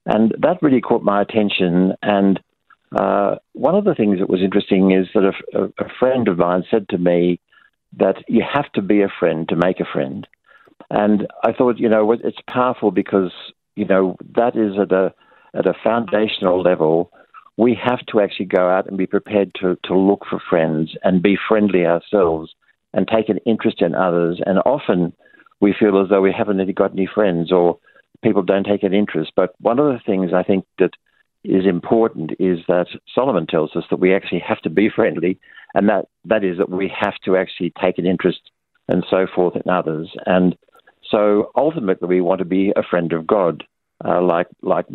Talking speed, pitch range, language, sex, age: 200 wpm, 90-105 Hz, English, male, 60-79